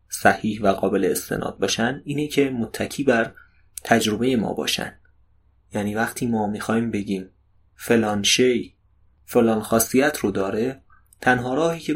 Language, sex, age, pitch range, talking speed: Persian, male, 30-49, 100-130 Hz, 130 wpm